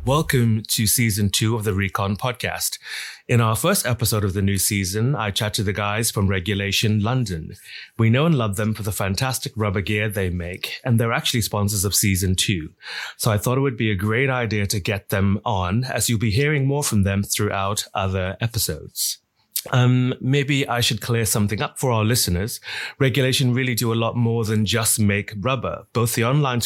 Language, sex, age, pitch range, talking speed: English, male, 30-49, 105-125 Hz, 200 wpm